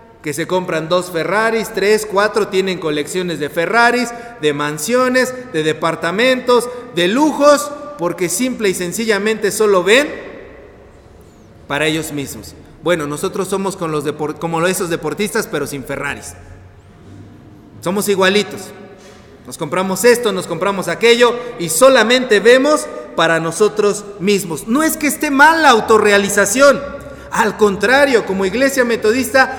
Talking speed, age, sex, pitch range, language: 130 wpm, 40-59, male, 170-235 Hz, Spanish